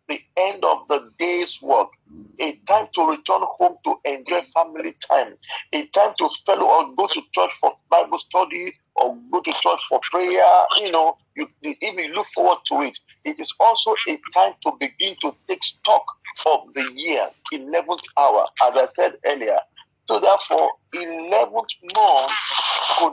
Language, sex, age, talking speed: English, male, 50-69, 170 wpm